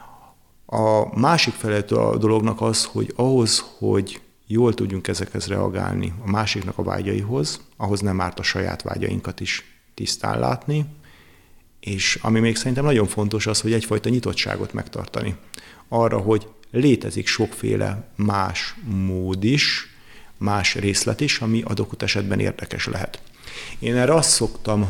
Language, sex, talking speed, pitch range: Hungarian, male, 135 wpm, 100-115 Hz